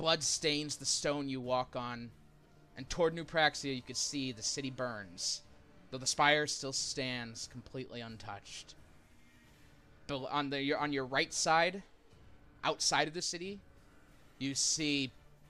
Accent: American